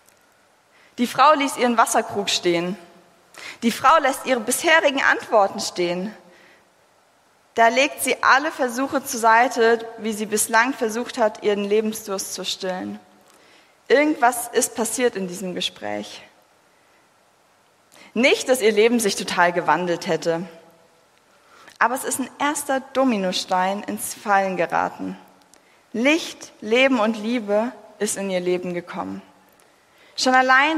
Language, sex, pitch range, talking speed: German, female, 195-265 Hz, 125 wpm